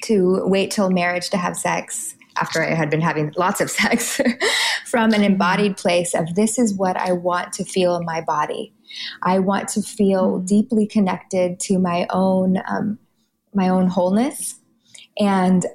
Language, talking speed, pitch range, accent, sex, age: English, 170 wpm, 185-225 Hz, American, female, 20-39